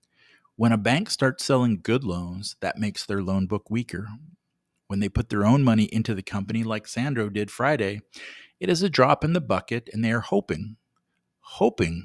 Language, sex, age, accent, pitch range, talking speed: English, male, 50-69, American, 95-125 Hz, 190 wpm